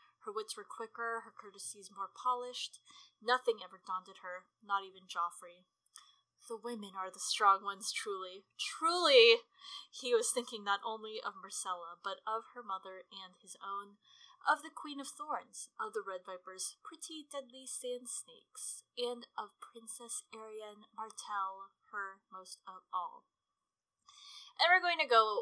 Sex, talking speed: female, 150 wpm